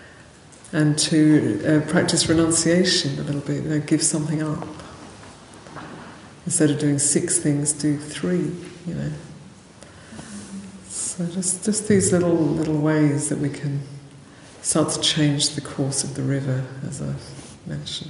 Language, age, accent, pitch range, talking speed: English, 50-69, British, 145-160 Hz, 145 wpm